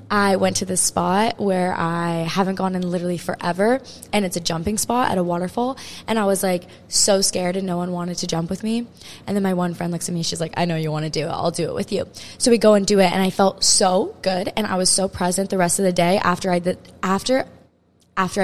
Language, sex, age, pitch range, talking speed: English, female, 20-39, 180-215 Hz, 265 wpm